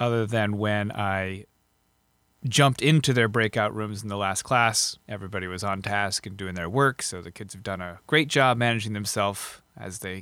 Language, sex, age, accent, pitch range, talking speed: English, male, 30-49, American, 95-120 Hz, 195 wpm